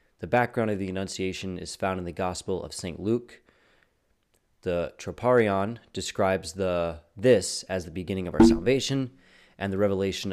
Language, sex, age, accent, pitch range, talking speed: English, male, 30-49, American, 90-110 Hz, 150 wpm